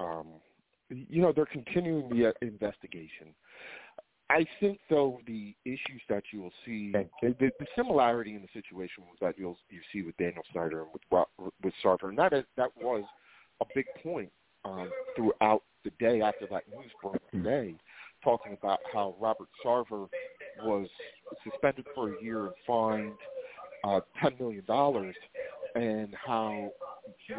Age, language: 40-59, English